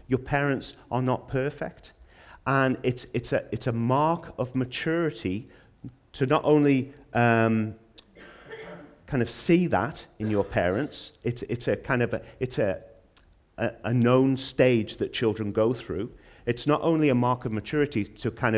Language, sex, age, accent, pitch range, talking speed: English, male, 40-59, British, 110-145 Hz, 160 wpm